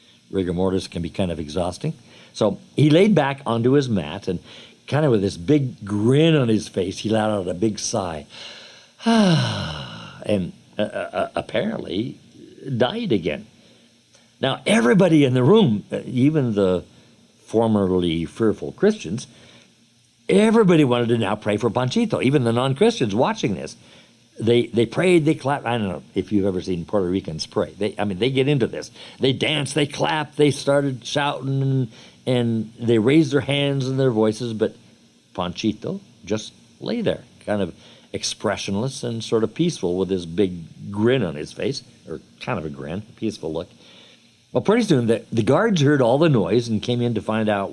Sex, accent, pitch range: male, American, 100-140 Hz